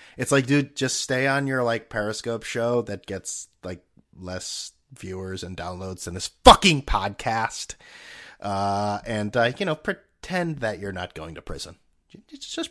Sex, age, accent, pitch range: male, 30-49, American, 105-160 Hz